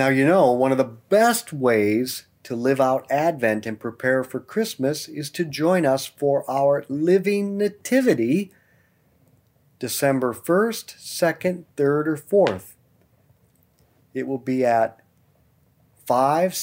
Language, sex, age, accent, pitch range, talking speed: English, male, 40-59, American, 125-180 Hz, 125 wpm